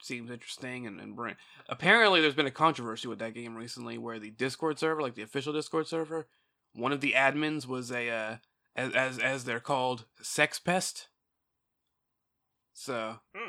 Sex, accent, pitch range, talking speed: male, American, 125-150 Hz, 165 wpm